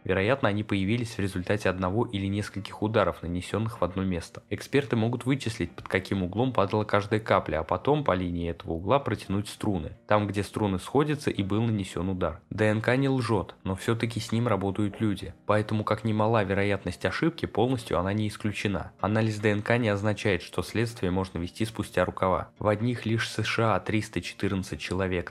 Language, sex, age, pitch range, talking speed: Russian, male, 20-39, 95-115 Hz, 175 wpm